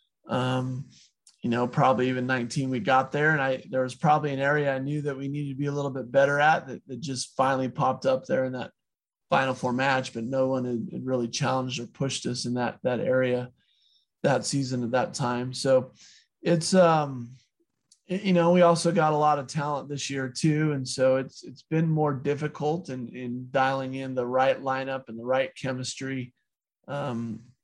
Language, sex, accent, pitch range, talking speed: English, male, American, 130-145 Hz, 205 wpm